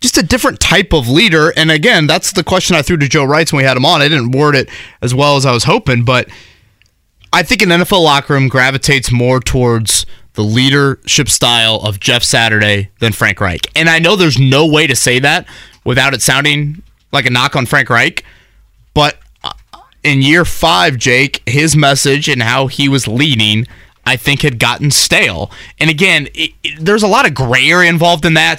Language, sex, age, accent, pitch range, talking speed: English, male, 20-39, American, 120-155 Hz, 205 wpm